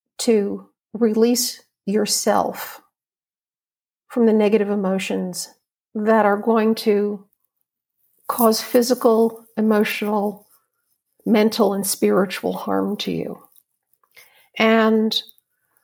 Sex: female